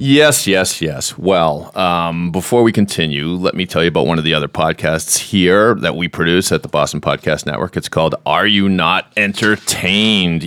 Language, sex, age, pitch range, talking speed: English, male, 40-59, 75-100 Hz, 190 wpm